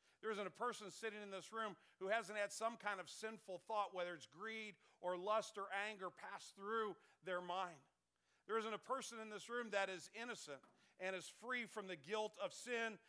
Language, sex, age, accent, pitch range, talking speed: English, male, 50-69, American, 160-215 Hz, 205 wpm